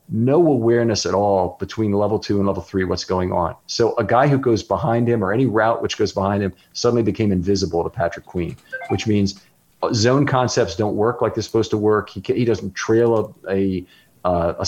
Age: 40-59